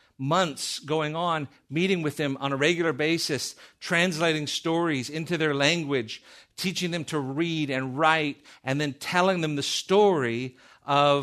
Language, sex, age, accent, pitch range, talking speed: English, male, 50-69, American, 150-195 Hz, 150 wpm